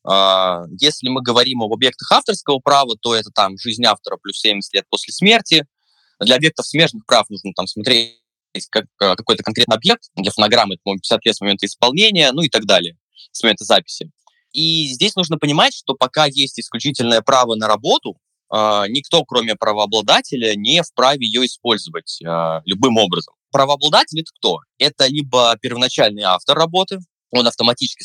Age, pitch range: 20-39, 105-150 Hz